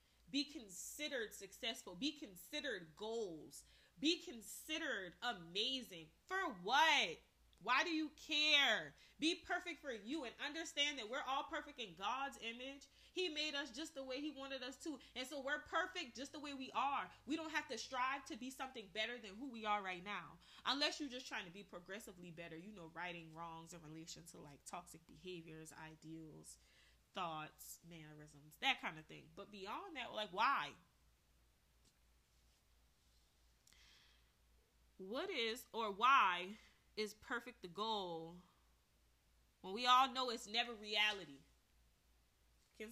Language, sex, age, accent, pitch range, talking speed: English, female, 20-39, American, 160-270 Hz, 150 wpm